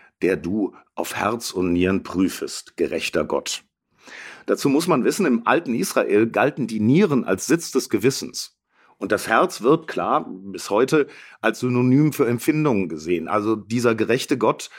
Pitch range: 100-130 Hz